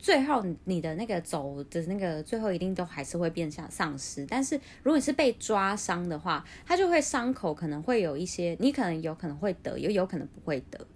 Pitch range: 165-220 Hz